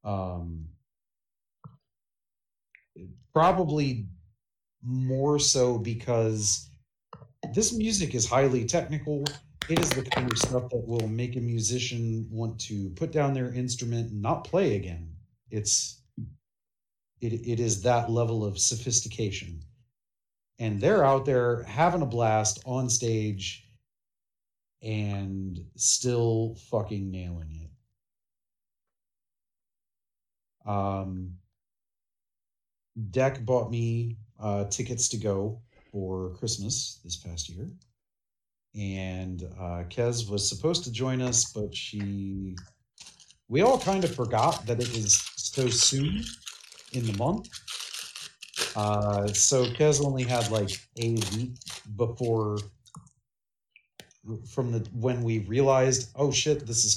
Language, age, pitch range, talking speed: English, 30-49, 100-125 Hz, 115 wpm